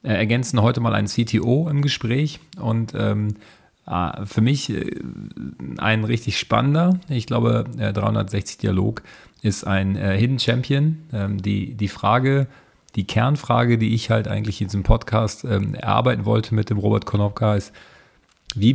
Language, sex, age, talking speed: German, male, 40-59, 140 wpm